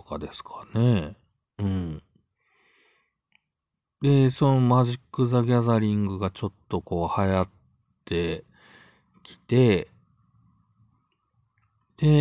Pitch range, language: 85-125 Hz, Japanese